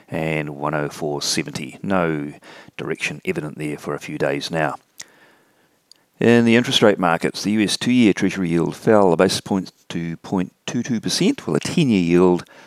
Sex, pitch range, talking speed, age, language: male, 90-125 Hz, 140 wpm, 40-59, English